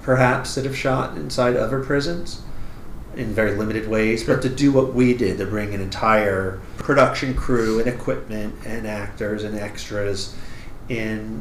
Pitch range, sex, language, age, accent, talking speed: 105-130 Hz, male, English, 40-59, American, 160 wpm